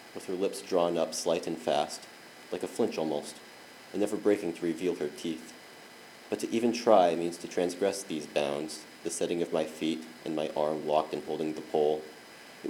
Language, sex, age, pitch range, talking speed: English, male, 30-49, 80-90 Hz, 200 wpm